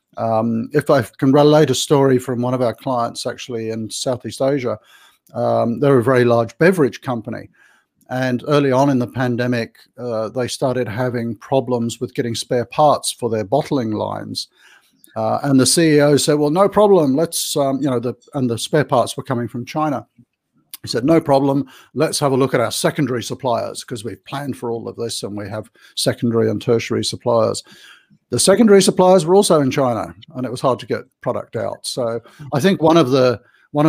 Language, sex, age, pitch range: English, male, 50-69, 115-140 Hz